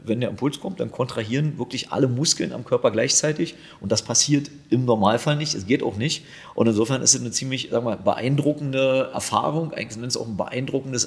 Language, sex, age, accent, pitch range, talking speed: German, male, 40-59, German, 120-150 Hz, 200 wpm